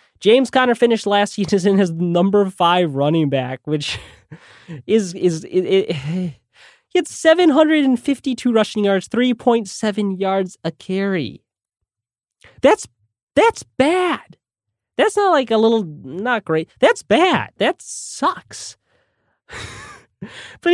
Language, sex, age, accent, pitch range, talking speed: English, male, 20-39, American, 160-235 Hz, 135 wpm